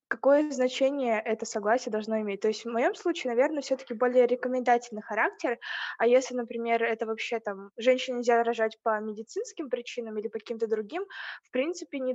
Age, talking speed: 20-39, 175 wpm